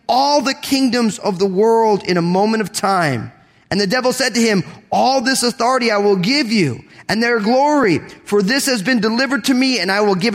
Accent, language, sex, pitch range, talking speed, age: American, English, male, 150-220 Hz, 220 wpm, 30-49